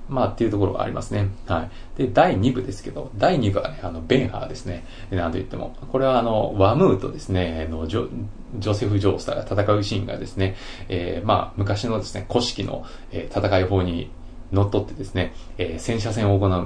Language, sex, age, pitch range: Japanese, male, 20-39, 90-110 Hz